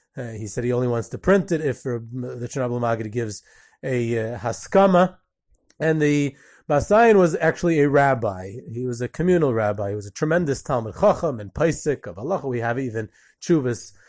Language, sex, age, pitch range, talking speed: English, male, 30-49, 120-150 Hz, 185 wpm